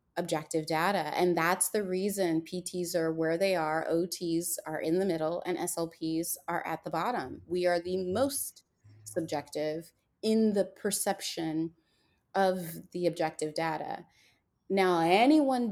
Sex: female